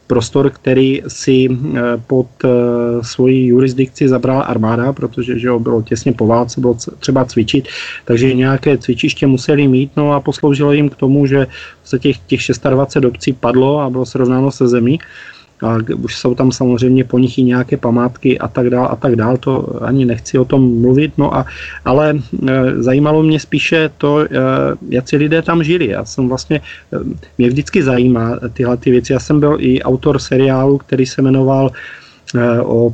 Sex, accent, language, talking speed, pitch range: male, native, Czech, 175 wpm, 125-145 Hz